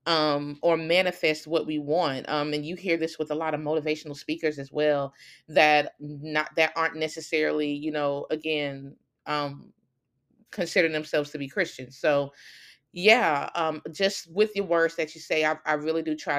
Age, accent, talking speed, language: 20-39, American, 175 wpm, English